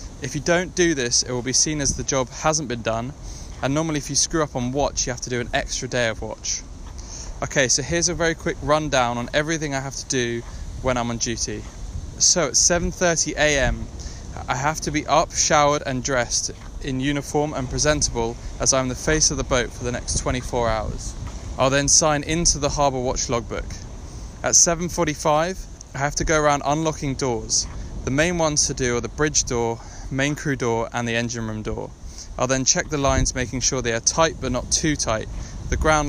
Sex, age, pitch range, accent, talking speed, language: male, 20-39, 120-150 Hz, British, 210 wpm, English